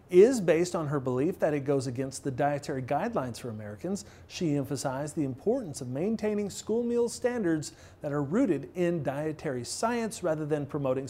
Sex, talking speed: male, 175 wpm